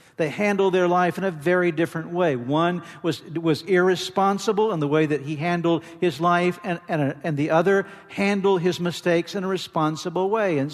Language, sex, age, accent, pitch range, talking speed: English, male, 50-69, American, 155-190 Hz, 190 wpm